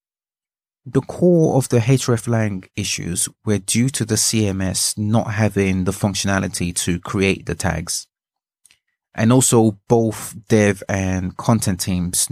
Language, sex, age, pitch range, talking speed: English, male, 30-49, 90-115 Hz, 125 wpm